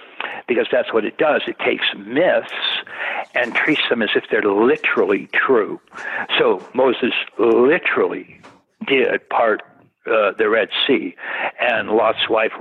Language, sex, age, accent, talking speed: English, male, 60-79, American, 135 wpm